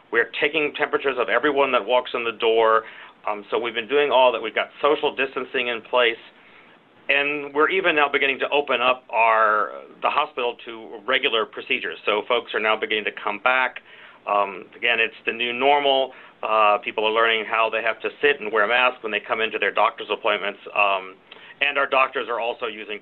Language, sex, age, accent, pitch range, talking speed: English, male, 40-59, American, 110-150 Hz, 205 wpm